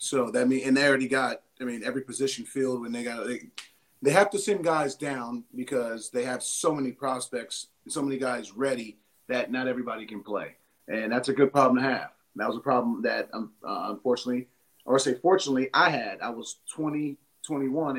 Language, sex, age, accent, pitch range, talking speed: English, male, 40-59, American, 125-155 Hz, 205 wpm